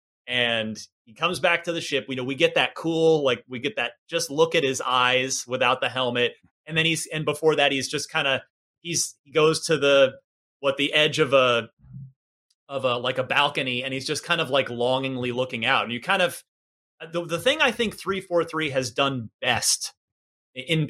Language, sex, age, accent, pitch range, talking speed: English, male, 30-49, American, 125-165 Hz, 215 wpm